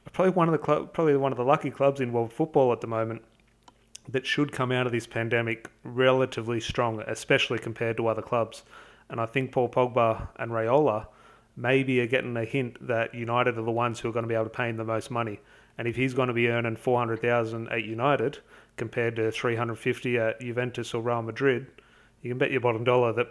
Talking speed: 225 wpm